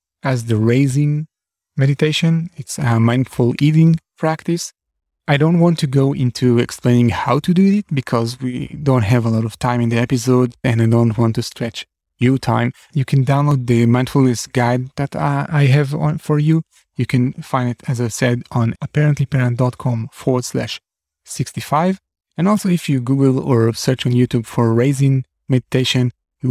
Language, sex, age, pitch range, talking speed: English, male, 30-49, 115-145 Hz, 170 wpm